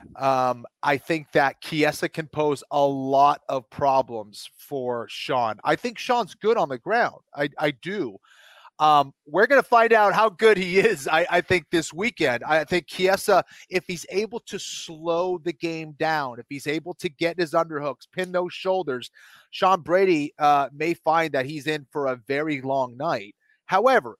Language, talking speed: English, 180 wpm